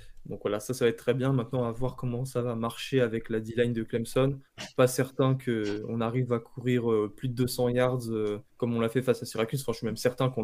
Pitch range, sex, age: 115-130 Hz, male, 20-39